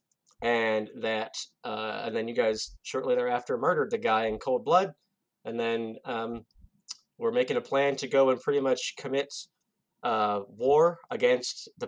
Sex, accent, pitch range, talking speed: male, American, 110-140 Hz, 160 wpm